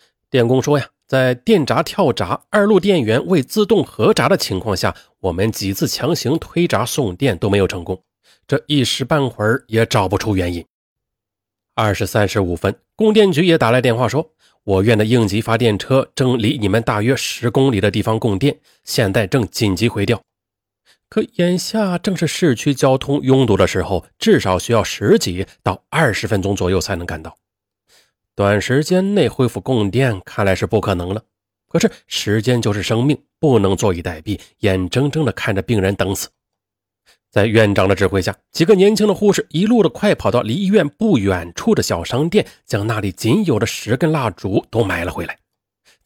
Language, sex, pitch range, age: Chinese, male, 100-145 Hz, 30-49